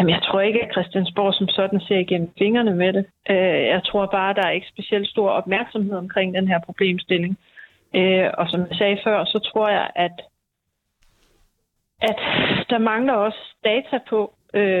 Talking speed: 170 wpm